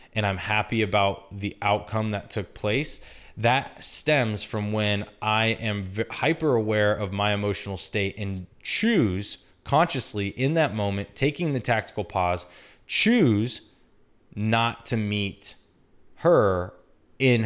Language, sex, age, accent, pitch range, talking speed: English, male, 20-39, American, 100-120 Hz, 125 wpm